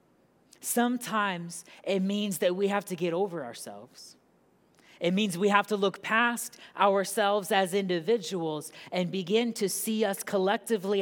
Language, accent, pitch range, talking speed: English, American, 180-210 Hz, 140 wpm